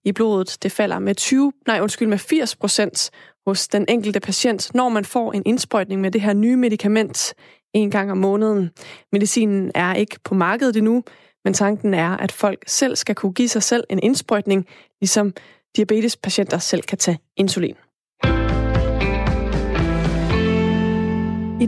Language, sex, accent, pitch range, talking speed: Danish, female, native, 195-225 Hz, 145 wpm